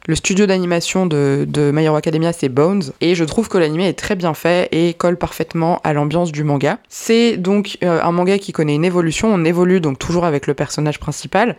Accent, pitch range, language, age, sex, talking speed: French, 150-185 Hz, French, 20-39, female, 225 wpm